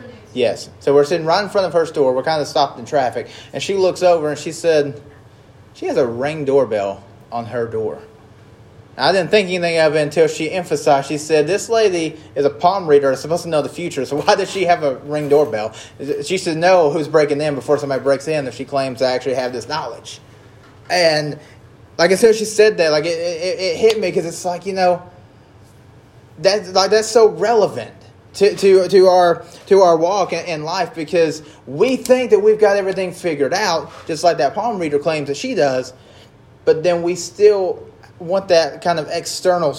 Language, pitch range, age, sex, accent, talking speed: English, 140-185 Hz, 20-39, male, American, 210 wpm